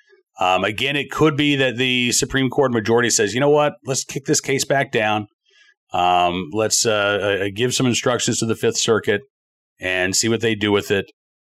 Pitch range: 95-145 Hz